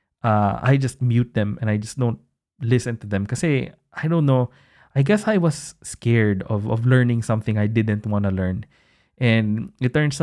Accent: native